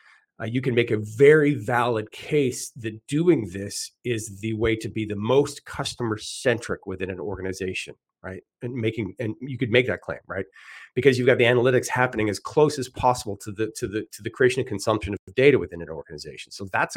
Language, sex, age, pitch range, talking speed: English, male, 40-59, 100-125 Hz, 205 wpm